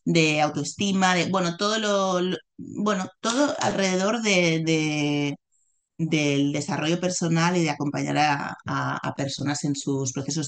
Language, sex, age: Spanish, female, 30-49